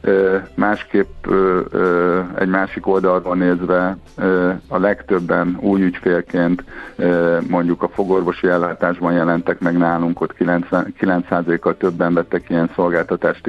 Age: 50-69